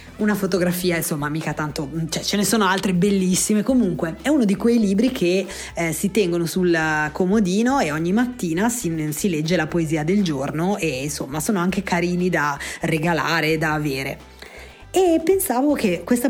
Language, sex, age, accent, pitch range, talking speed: Italian, female, 20-39, native, 165-205 Hz, 175 wpm